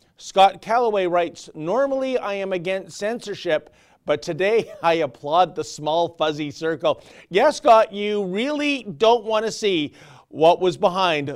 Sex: male